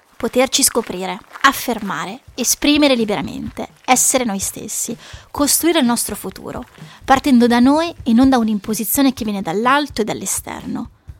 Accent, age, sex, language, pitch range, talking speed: native, 20-39, female, Italian, 220-270 Hz, 130 wpm